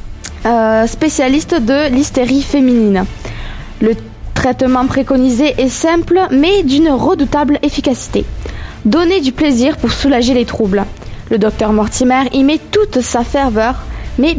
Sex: female